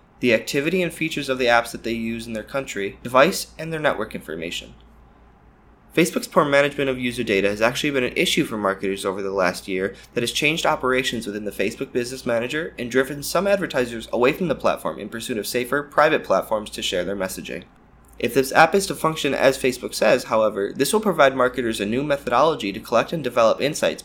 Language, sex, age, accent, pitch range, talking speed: English, male, 20-39, American, 110-145 Hz, 210 wpm